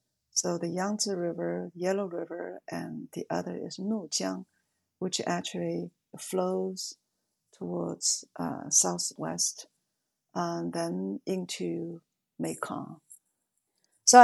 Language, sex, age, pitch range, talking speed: English, female, 50-69, 160-215 Hz, 95 wpm